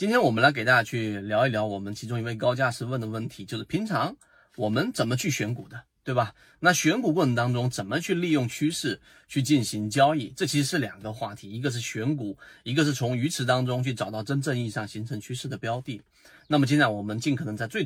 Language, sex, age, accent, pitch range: Chinese, male, 30-49, native, 110-150 Hz